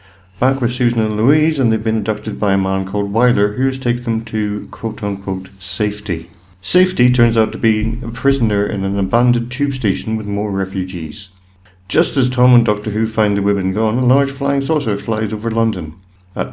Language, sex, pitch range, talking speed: English, male, 95-120 Hz, 195 wpm